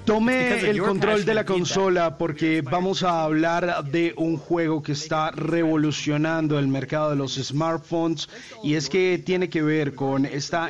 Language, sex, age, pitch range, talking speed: Spanish, male, 30-49, 135-160 Hz, 165 wpm